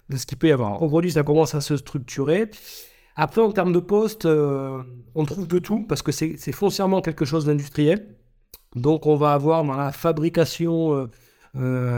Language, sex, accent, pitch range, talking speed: French, male, French, 140-170 Hz, 190 wpm